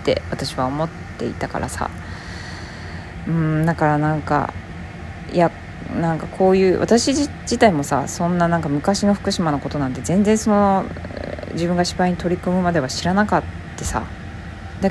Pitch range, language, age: 135-190 Hz, Japanese, 20-39